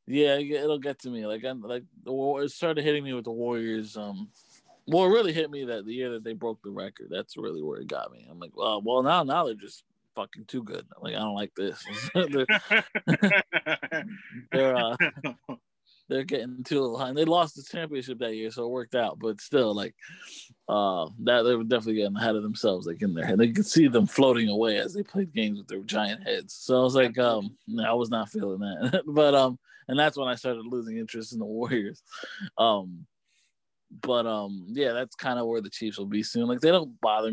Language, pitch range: English, 110-150 Hz